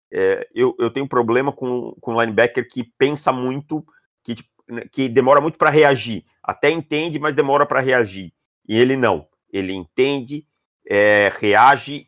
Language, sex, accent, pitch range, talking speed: Portuguese, male, Brazilian, 110-135 Hz, 160 wpm